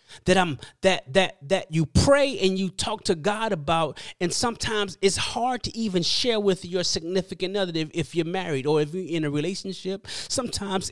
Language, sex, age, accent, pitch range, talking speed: English, male, 30-49, American, 145-195 Hz, 190 wpm